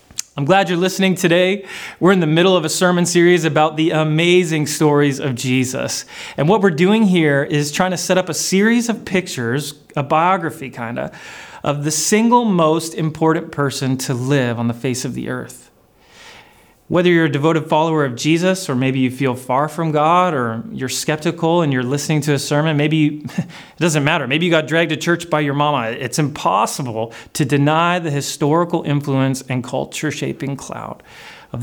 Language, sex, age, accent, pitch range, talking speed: English, male, 30-49, American, 130-175 Hz, 185 wpm